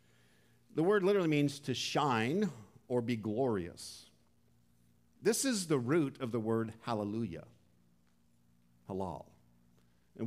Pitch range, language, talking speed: 95-145 Hz, English, 110 wpm